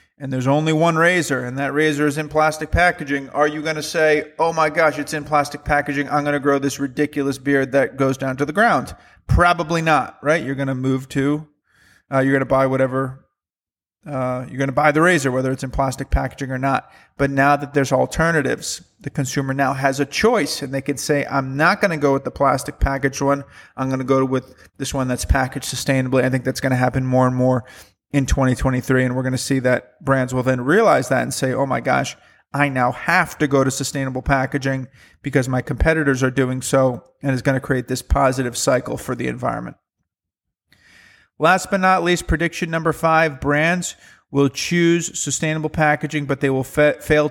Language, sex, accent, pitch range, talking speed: English, male, American, 130-150 Hz, 215 wpm